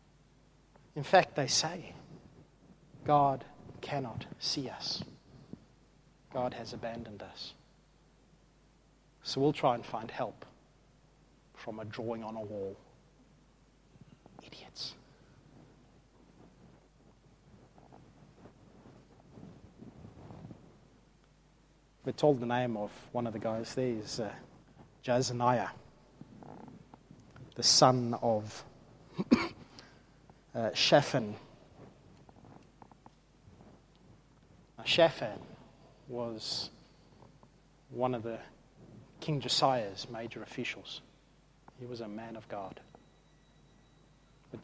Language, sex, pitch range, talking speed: English, male, 120-145 Hz, 80 wpm